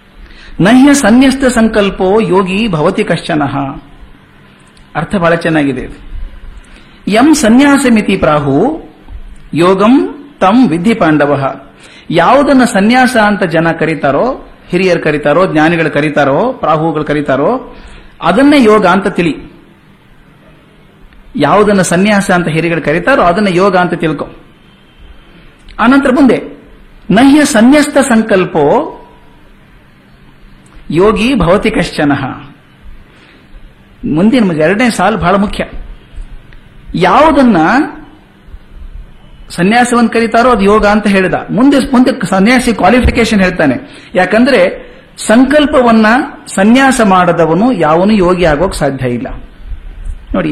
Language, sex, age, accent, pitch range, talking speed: Kannada, male, 50-69, native, 150-230 Hz, 85 wpm